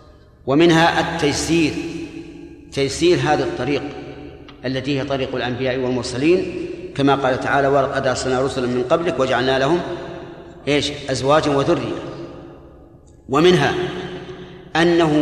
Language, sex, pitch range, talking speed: Arabic, male, 130-165 Hz, 100 wpm